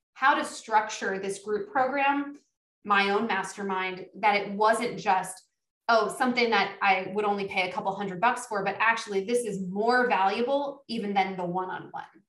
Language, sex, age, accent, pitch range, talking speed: English, female, 20-39, American, 195-230 Hz, 170 wpm